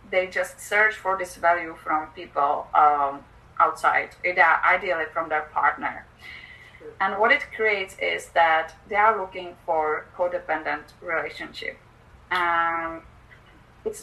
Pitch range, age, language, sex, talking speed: 170-205 Hz, 30-49, English, female, 120 wpm